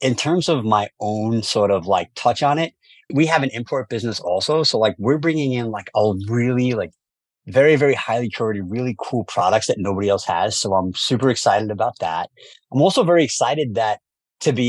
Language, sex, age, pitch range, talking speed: English, male, 30-49, 105-140 Hz, 205 wpm